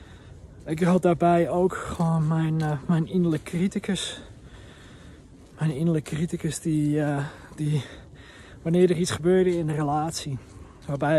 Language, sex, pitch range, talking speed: Dutch, male, 135-165 Hz, 120 wpm